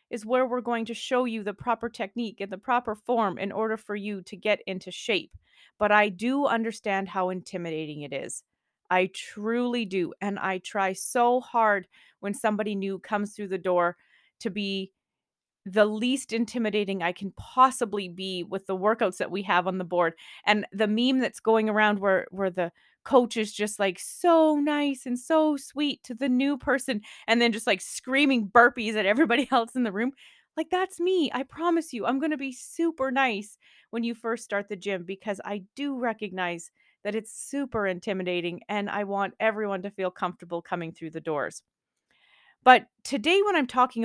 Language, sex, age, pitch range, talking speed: English, female, 30-49, 195-250 Hz, 190 wpm